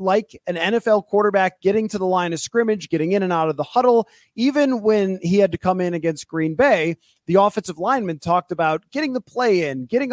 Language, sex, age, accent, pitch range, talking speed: English, male, 30-49, American, 170-215 Hz, 220 wpm